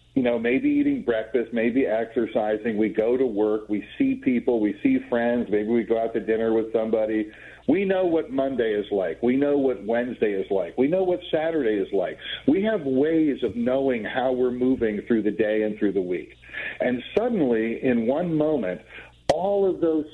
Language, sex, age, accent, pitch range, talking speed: English, male, 50-69, American, 110-160 Hz, 195 wpm